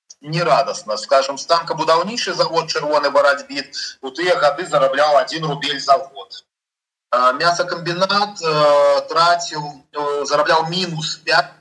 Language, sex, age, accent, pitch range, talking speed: Russian, male, 30-49, native, 140-175 Hz, 105 wpm